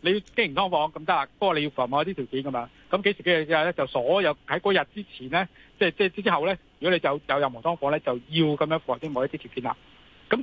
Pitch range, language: 140-195 Hz, Chinese